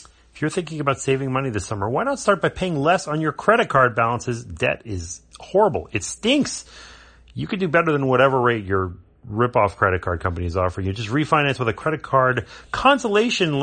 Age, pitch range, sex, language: 30-49, 100-155 Hz, male, English